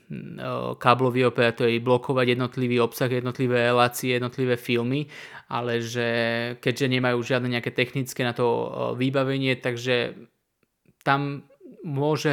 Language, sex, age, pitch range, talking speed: Slovak, male, 20-39, 125-145 Hz, 105 wpm